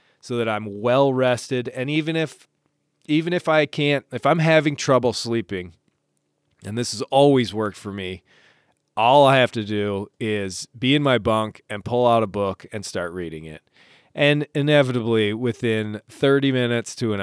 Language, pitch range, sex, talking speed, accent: English, 105-145 Hz, male, 175 wpm, American